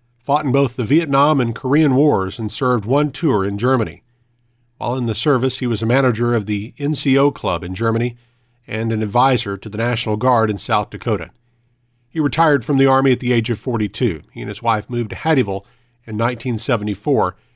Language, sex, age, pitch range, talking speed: English, male, 50-69, 110-135 Hz, 195 wpm